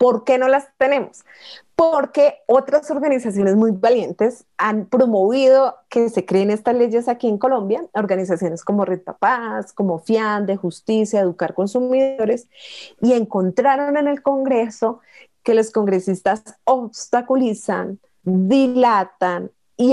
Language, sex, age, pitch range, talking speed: Spanish, female, 30-49, 190-255 Hz, 120 wpm